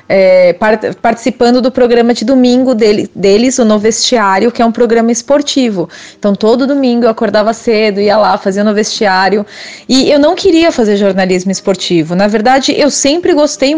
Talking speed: 180 wpm